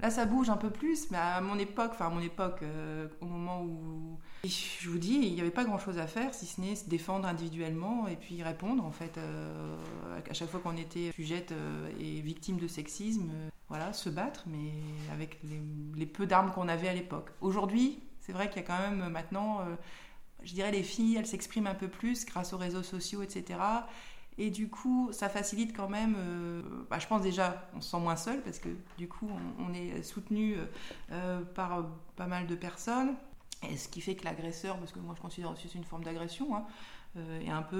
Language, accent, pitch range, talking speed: French, French, 160-200 Hz, 225 wpm